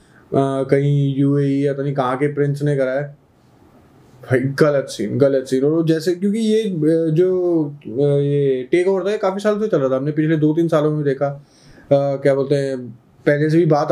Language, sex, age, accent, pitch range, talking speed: Hindi, male, 20-39, native, 135-160 Hz, 190 wpm